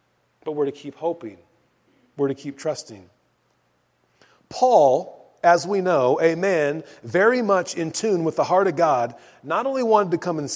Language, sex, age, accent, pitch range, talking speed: English, male, 30-49, American, 150-200 Hz, 170 wpm